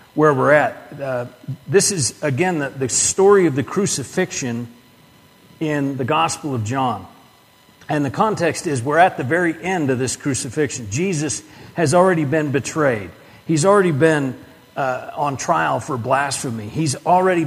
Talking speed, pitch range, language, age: 155 wpm, 130-180 Hz, English, 40-59